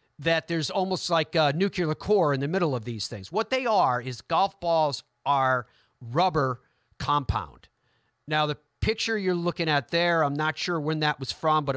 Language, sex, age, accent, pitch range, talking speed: English, male, 50-69, American, 130-170 Hz, 190 wpm